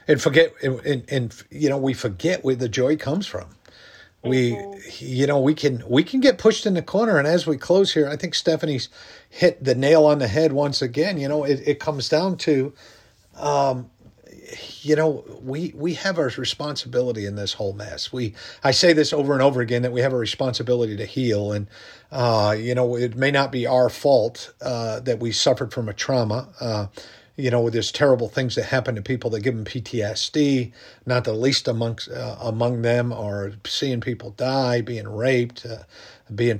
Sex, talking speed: male, 200 wpm